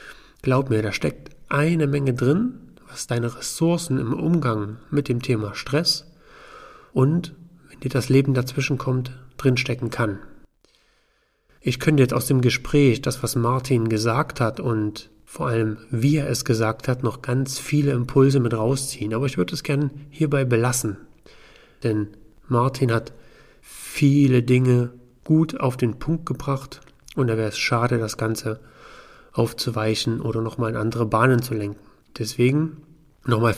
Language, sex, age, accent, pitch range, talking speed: German, male, 40-59, German, 115-145 Hz, 150 wpm